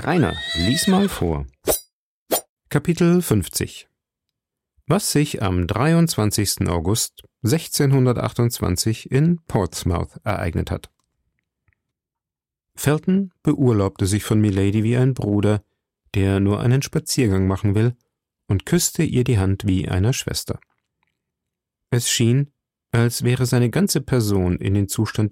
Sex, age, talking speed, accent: male, 40-59, 115 wpm, German